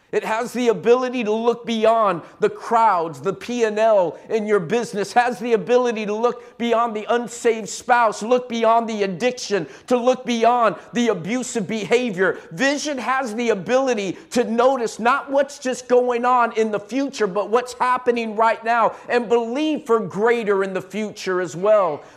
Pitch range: 210-250 Hz